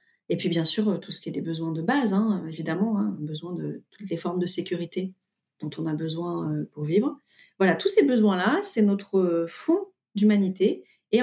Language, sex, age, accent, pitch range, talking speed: French, female, 30-49, French, 185-240 Hz, 200 wpm